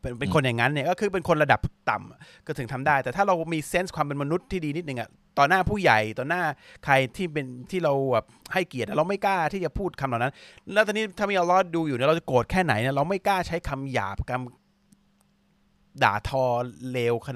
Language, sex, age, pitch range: Thai, male, 30-49, 120-165 Hz